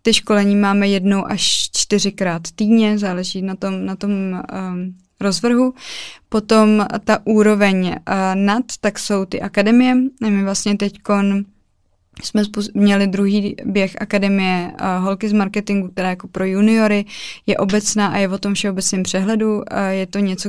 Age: 20-39